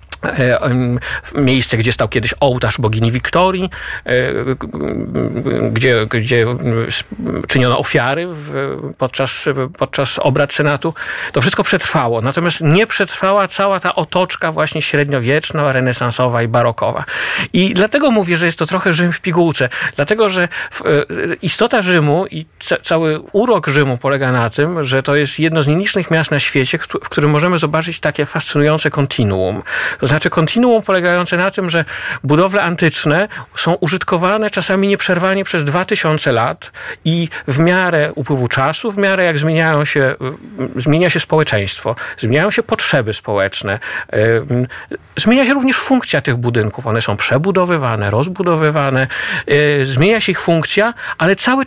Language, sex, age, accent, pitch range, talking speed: Polish, male, 50-69, native, 135-185 Hz, 135 wpm